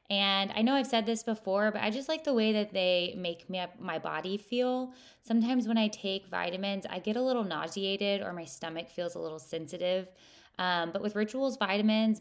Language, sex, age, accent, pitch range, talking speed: English, female, 20-39, American, 175-215 Hz, 200 wpm